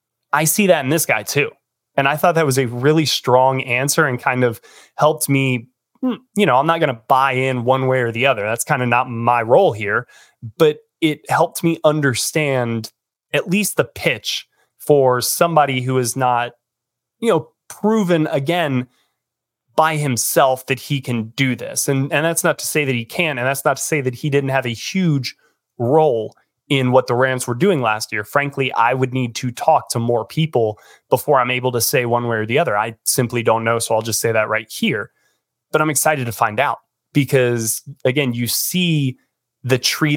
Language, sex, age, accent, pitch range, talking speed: English, male, 30-49, American, 120-145 Hz, 205 wpm